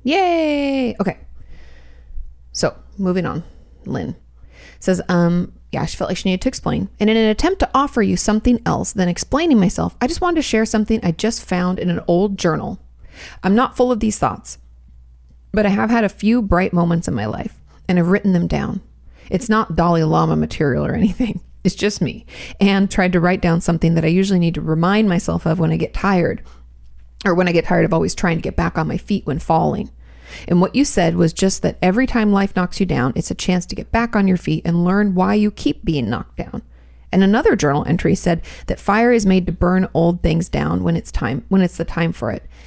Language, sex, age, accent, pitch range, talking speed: English, female, 30-49, American, 160-210 Hz, 225 wpm